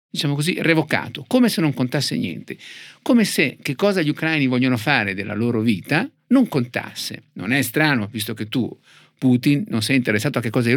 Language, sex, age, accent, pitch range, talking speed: Italian, male, 50-69, native, 120-145 Hz, 195 wpm